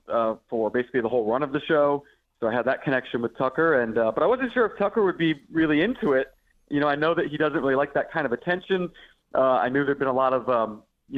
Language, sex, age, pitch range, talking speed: English, male, 30-49, 125-155 Hz, 285 wpm